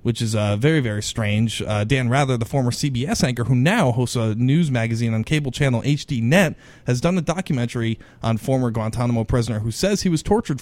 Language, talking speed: English, 205 wpm